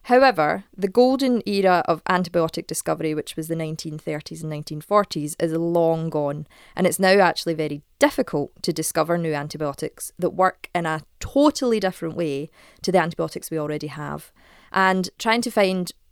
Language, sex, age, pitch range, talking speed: English, female, 20-39, 160-195 Hz, 160 wpm